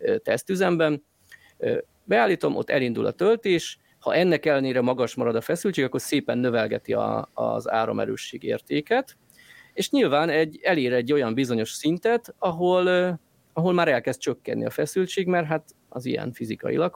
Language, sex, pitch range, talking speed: Hungarian, male, 125-175 Hz, 140 wpm